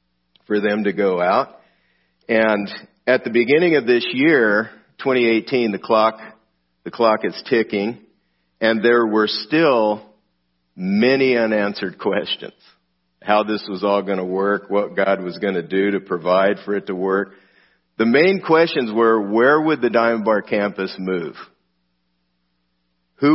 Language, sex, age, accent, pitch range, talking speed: English, male, 50-69, American, 95-120 Hz, 145 wpm